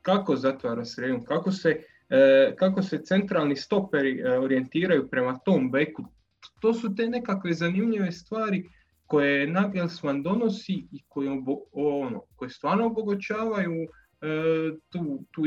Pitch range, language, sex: 140-205 Hz, Croatian, male